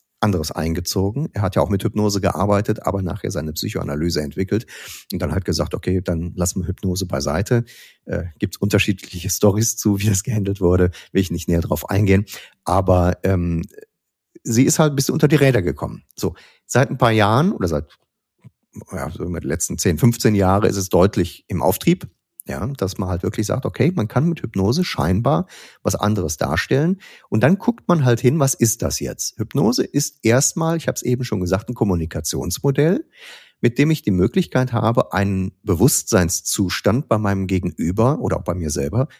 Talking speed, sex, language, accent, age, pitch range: 180 wpm, male, German, German, 40-59, 95-130 Hz